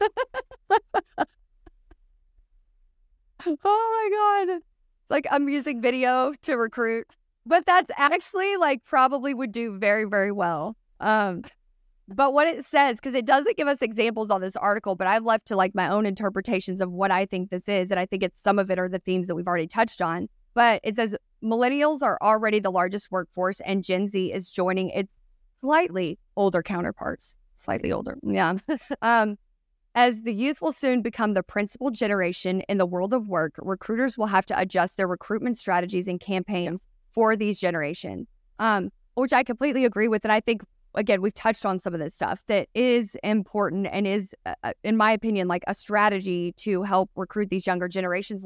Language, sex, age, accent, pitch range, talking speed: English, female, 30-49, American, 185-245 Hz, 180 wpm